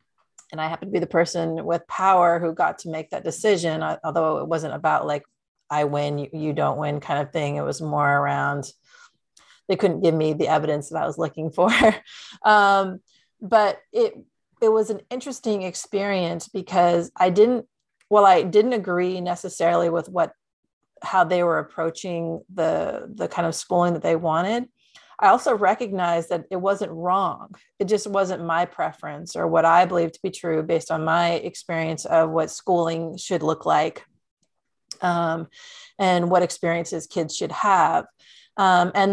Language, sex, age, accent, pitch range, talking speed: English, female, 40-59, American, 165-195 Hz, 175 wpm